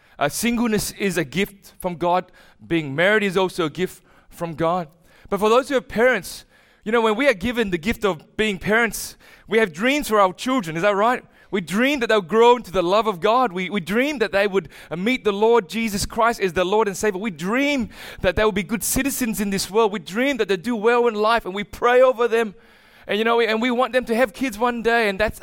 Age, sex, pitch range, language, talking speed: 20-39, male, 190-245 Hz, English, 250 wpm